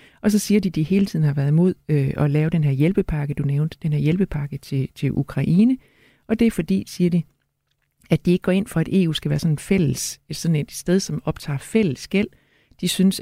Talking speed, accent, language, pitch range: 235 wpm, native, Danish, 145-180 Hz